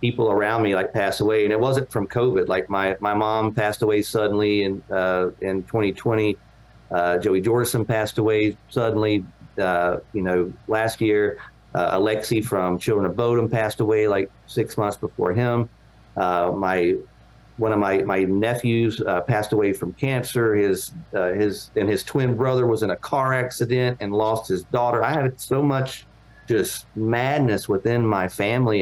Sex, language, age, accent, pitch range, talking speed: male, English, 50-69, American, 95-115 Hz, 175 wpm